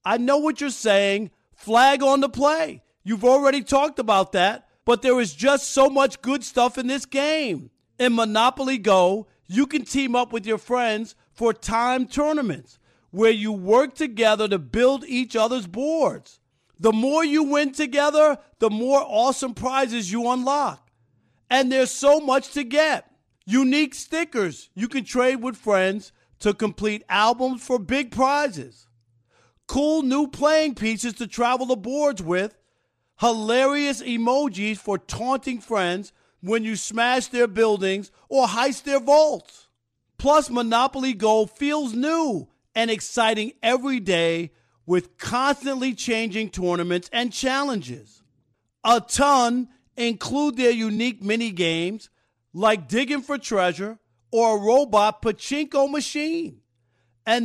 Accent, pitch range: American, 210-275 Hz